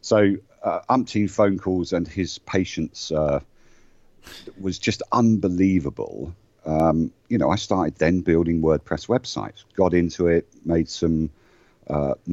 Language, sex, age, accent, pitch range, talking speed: English, male, 50-69, British, 70-90 Hz, 130 wpm